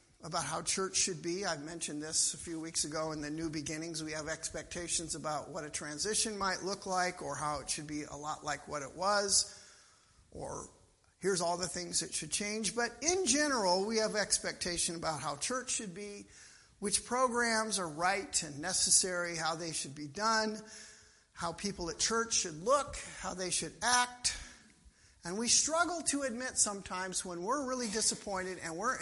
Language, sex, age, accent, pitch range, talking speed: English, male, 50-69, American, 165-220 Hz, 185 wpm